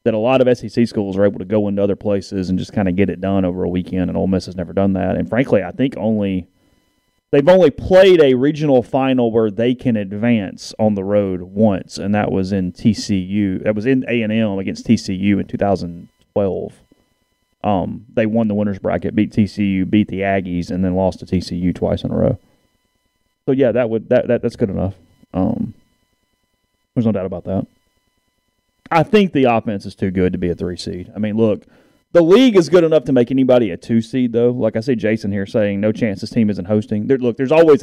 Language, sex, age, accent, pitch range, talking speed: English, male, 30-49, American, 95-120 Hz, 225 wpm